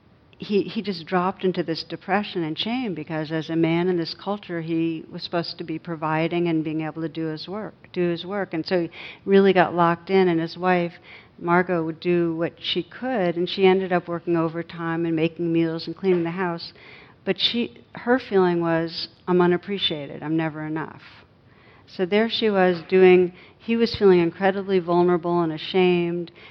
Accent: American